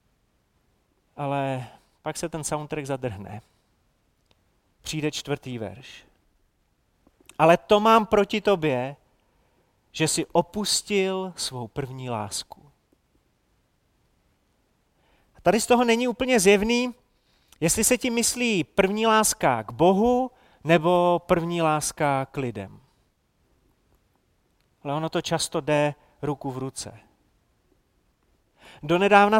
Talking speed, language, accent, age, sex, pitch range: 100 wpm, Czech, native, 30-49, male, 150-210 Hz